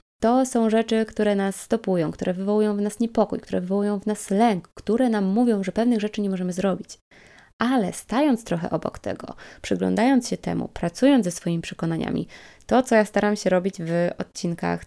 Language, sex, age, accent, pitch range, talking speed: Polish, female, 20-39, native, 185-230 Hz, 180 wpm